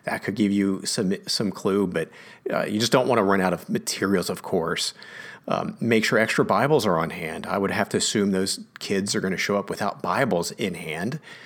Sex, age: male, 40-59